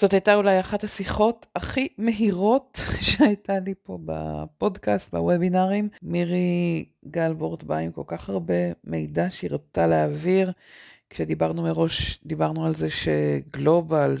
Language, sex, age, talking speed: Hebrew, female, 50-69, 125 wpm